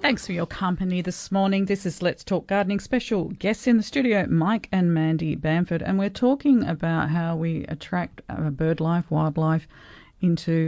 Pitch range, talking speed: 150-180 Hz, 175 wpm